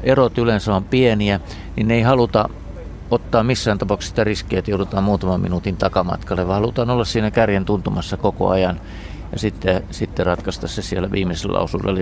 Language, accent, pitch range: Finnish, native, 95-110 Hz